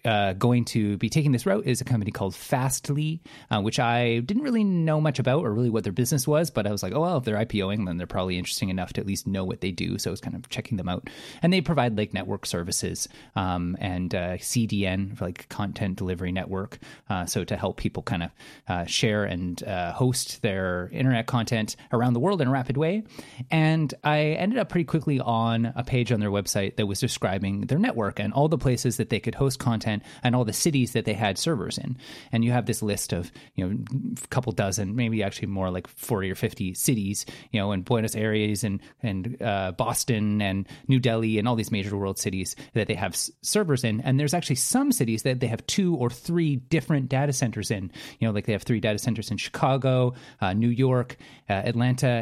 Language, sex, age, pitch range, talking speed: English, male, 30-49, 100-130 Hz, 230 wpm